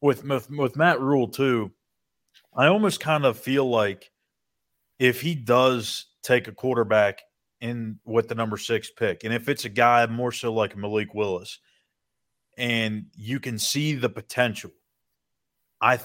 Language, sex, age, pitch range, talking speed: English, male, 30-49, 105-130 Hz, 155 wpm